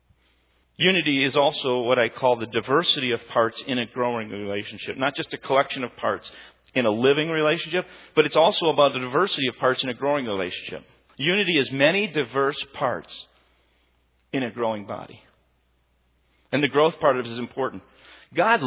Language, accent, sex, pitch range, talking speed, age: English, American, male, 105-145 Hz, 175 wpm, 50-69